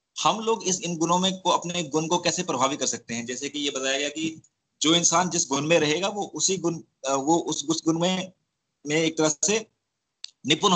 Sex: male